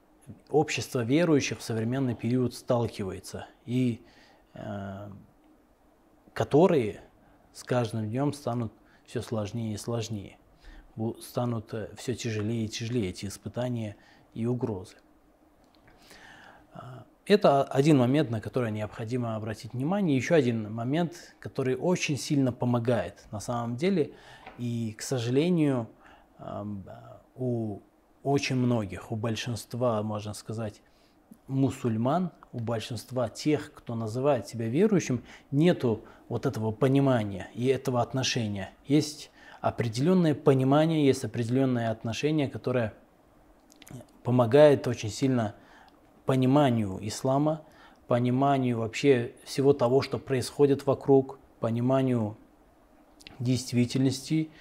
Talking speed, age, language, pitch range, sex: 100 wpm, 20-39, Russian, 115-140 Hz, male